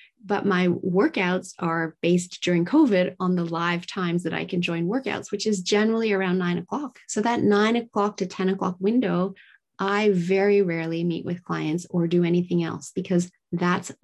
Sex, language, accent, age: female, English, American, 30-49